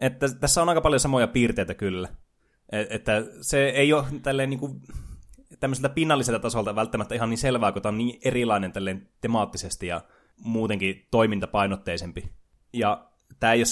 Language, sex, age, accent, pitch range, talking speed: Finnish, male, 20-39, native, 95-120 Hz, 145 wpm